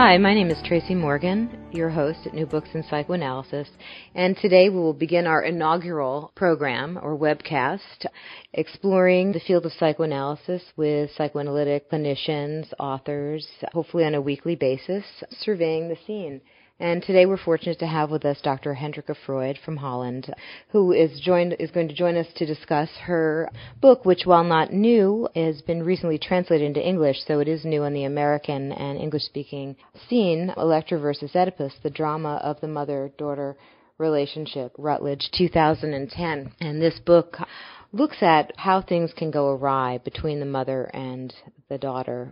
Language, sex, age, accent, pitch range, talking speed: English, female, 30-49, American, 140-170 Hz, 160 wpm